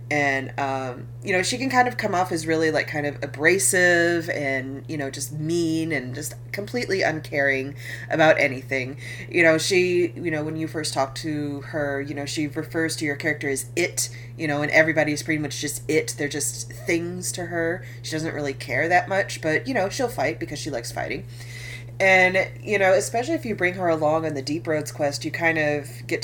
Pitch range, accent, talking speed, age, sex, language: 130-165 Hz, American, 215 wpm, 30-49, female, English